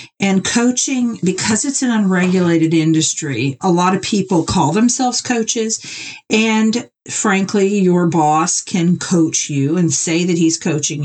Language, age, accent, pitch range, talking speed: English, 50-69, American, 155-190 Hz, 140 wpm